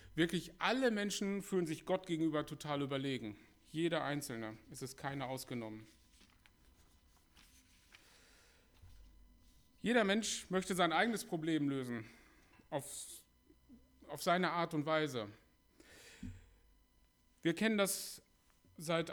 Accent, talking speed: German, 100 wpm